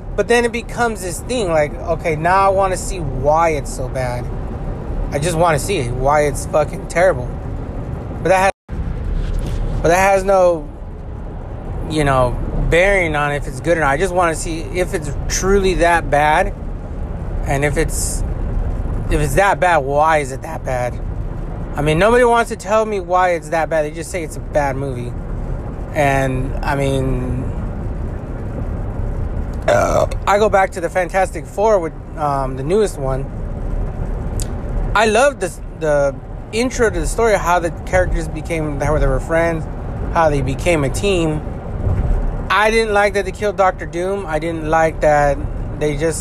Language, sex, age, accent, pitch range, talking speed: English, male, 30-49, American, 120-175 Hz, 175 wpm